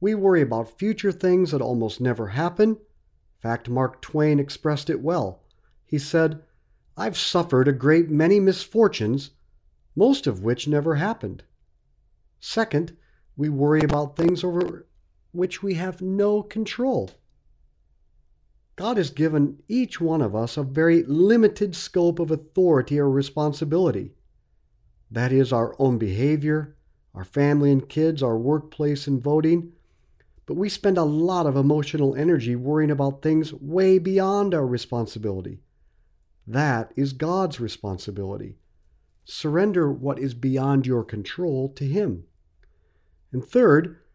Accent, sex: American, male